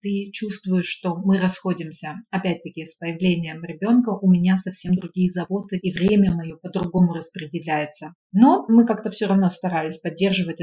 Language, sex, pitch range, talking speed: Russian, female, 175-225 Hz, 145 wpm